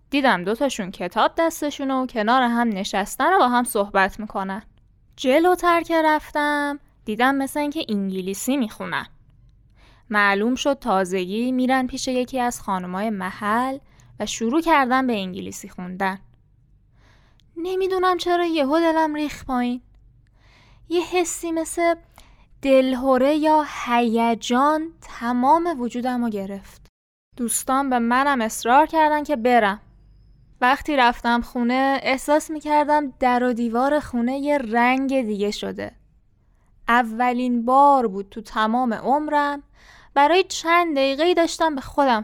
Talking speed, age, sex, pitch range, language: 120 wpm, 10-29, female, 210-290 Hz, Persian